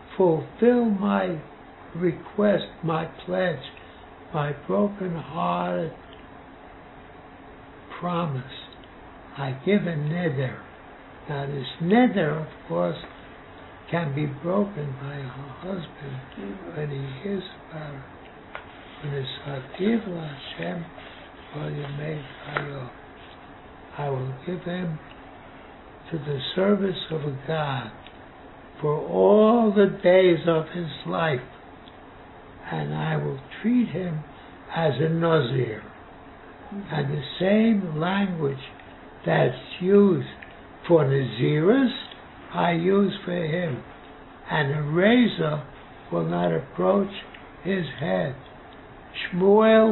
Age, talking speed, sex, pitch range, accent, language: 60-79, 90 wpm, male, 140-185 Hz, American, English